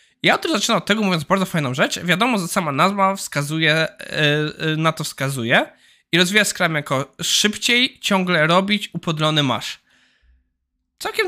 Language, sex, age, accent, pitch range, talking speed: Polish, male, 20-39, native, 145-190 Hz, 150 wpm